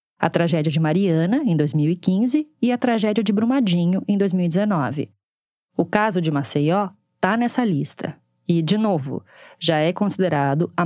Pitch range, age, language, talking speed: 160-240 Hz, 20-39, Portuguese, 150 wpm